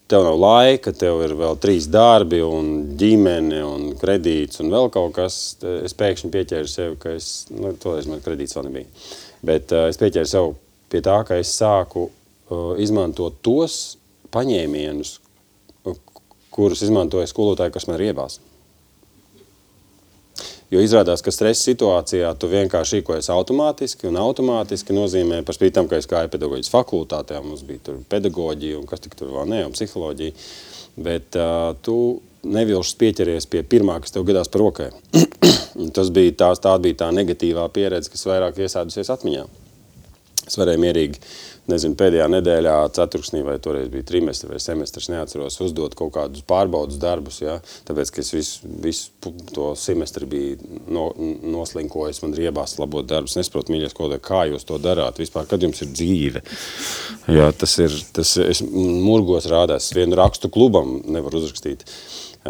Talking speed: 145 wpm